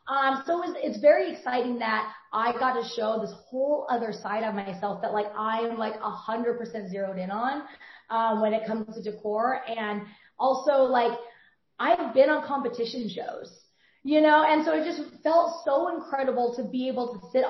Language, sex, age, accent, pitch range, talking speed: English, female, 20-39, American, 210-265 Hz, 185 wpm